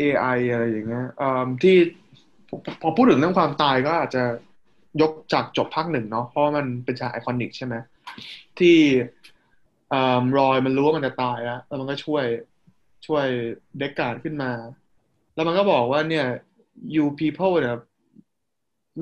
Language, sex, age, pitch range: Thai, male, 20-39, 125-160 Hz